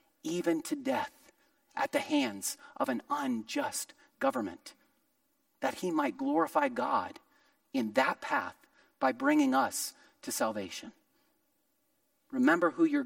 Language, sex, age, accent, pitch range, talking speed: English, male, 40-59, American, 240-290 Hz, 120 wpm